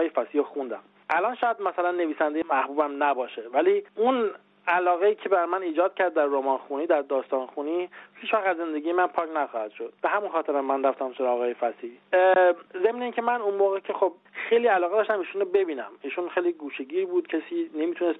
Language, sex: Persian, male